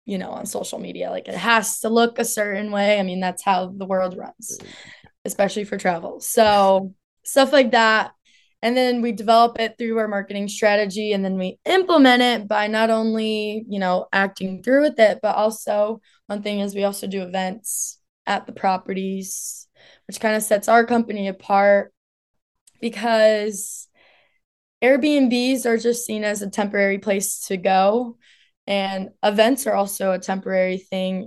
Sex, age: female, 20-39